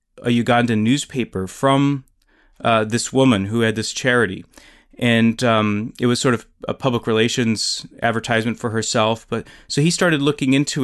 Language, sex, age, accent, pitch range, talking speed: English, male, 30-49, American, 110-125 Hz, 160 wpm